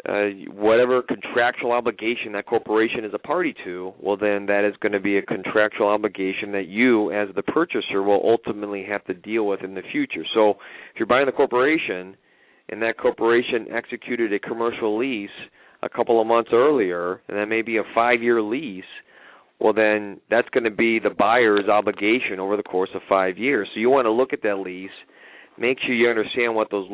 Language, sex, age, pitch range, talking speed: English, male, 40-59, 100-115 Hz, 195 wpm